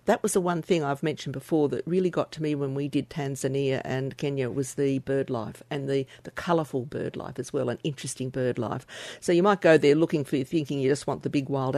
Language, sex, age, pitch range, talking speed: English, female, 50-69, 130-155 Hz, 255 wpm